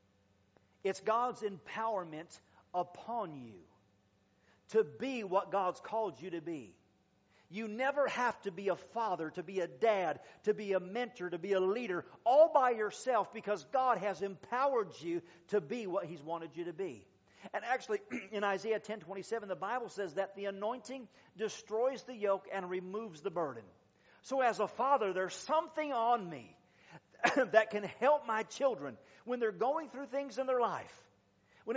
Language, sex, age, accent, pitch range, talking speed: English, male, 50-69, American, 175-240 Hz, 170 wpm